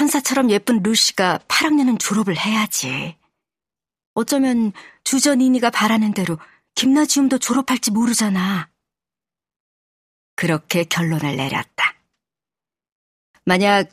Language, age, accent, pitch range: Korean, 40-59, native, 165-220 Hz